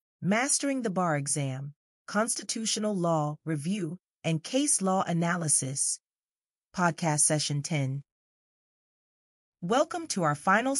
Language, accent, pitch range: English, American, 155-215 Hz